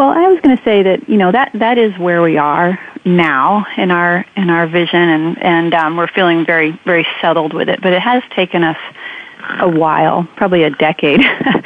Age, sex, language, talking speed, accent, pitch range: 30-49, female, English, 210 wpm, American, 160-190 Hz